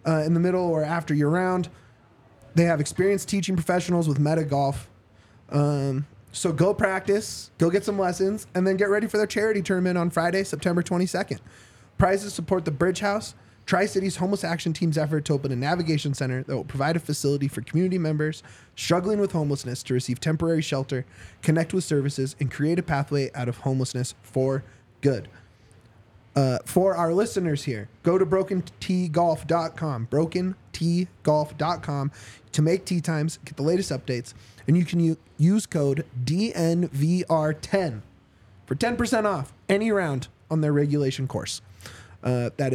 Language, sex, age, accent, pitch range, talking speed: English, male, 20-39, American, 125-175 Hz, 160 wpm